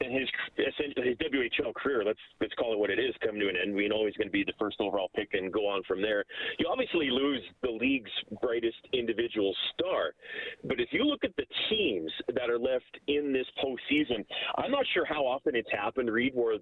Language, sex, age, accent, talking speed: English, male, 30-49, American, 220 wpm